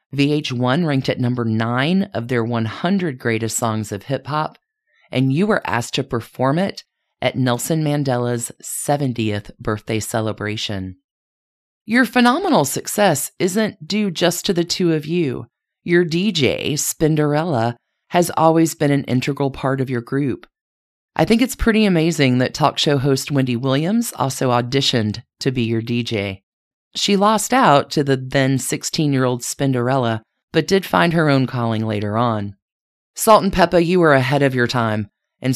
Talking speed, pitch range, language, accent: 155 wpm, 120-170 Hz, English, American